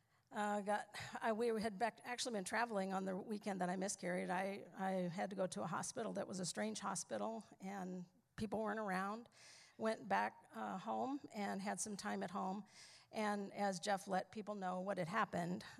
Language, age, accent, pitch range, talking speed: English, 50-69, American, 185-225 Hz, 195 wpm